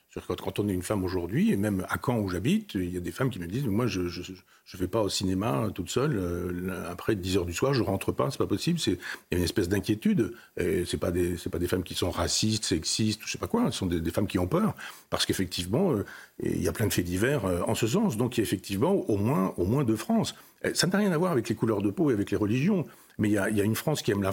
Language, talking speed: French, 300 wpm